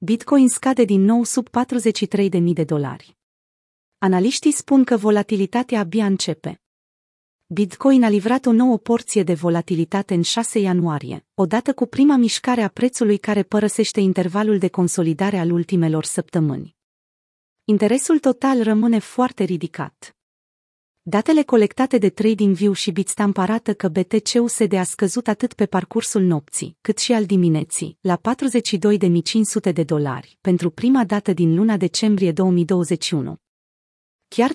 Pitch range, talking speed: 175-225 Hz, 135 wpm